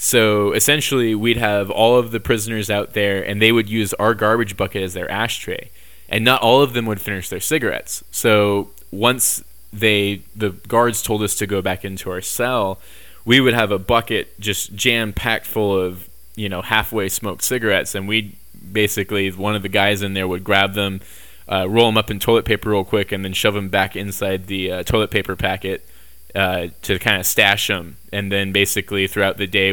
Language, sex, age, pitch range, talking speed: English, male, 20-39, 95-110 Hz, 200 wpm